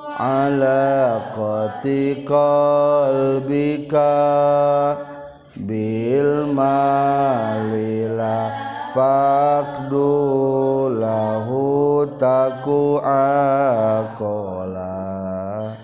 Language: Indonesian